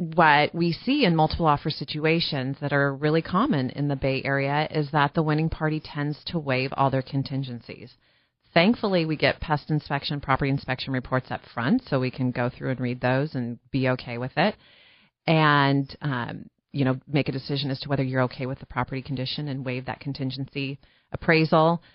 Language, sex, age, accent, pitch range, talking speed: English, female, 30-49, American, 130-160 Hz, 190 wpm